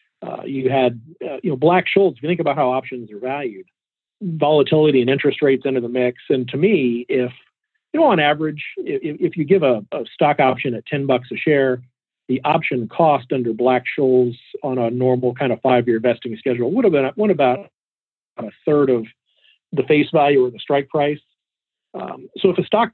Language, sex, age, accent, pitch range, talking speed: English, male, 40-59, American, 125-165 Hz, 200 wpm